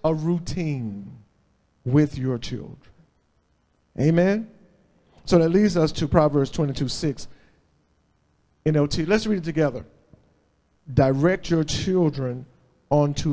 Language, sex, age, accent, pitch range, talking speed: English, male, 40-59, American, 115-170 Hz, 105 wpm